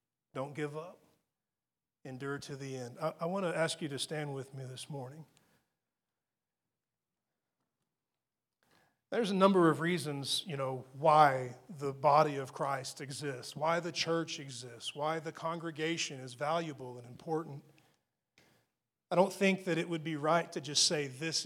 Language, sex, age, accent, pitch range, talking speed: English, male, 40-59, American, 140-170 Hz, 150 wpm